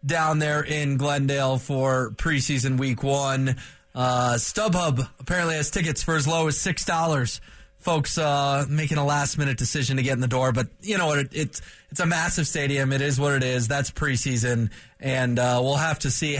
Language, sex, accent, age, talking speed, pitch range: English, male, American, 20-39, 190 wpm, 130-160 Hz